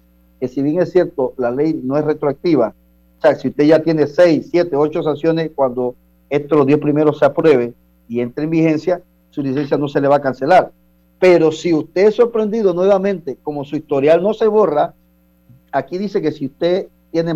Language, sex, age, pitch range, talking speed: Spanish, male, 40-59, 120-165 Hz, 195 wpm